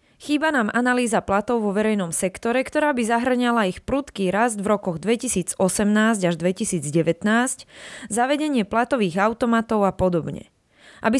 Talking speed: 130 wpm